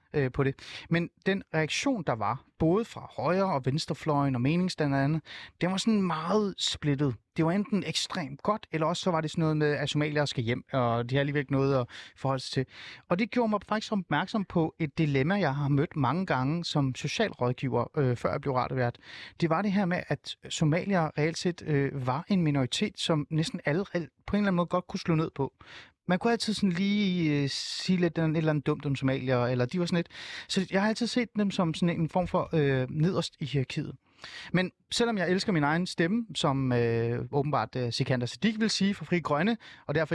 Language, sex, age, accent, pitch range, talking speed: Danish, male, 30-49, native, 135-185 Hz, 225 wpm